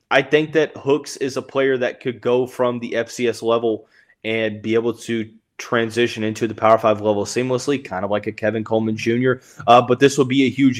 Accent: American